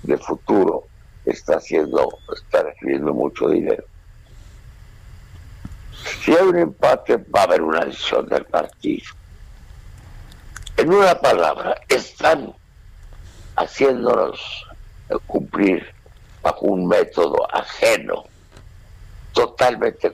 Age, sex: 60-79, male